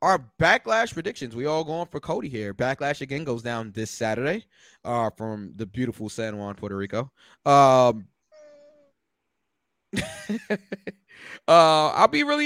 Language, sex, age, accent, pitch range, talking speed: English, male, 20-39, American, 120-170 Hz, 135 wpm